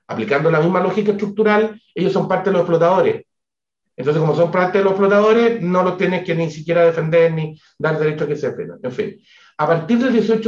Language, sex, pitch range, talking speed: Spanish, male, 150-205 Hz, 220 wpm